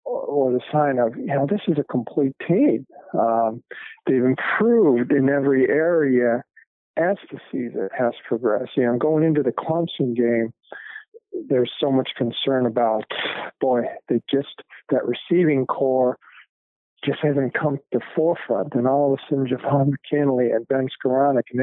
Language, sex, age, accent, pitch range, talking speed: English, male, 50-69, American, 125-150 Hz, 160 wpm